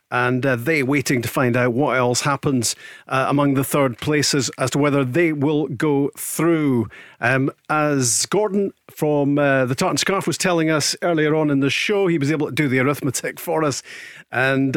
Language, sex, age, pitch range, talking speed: English, male, 50-69, 135-165 Hz, 195 wpm